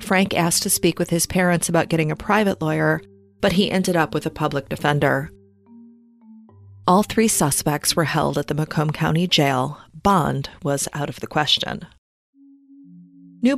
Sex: female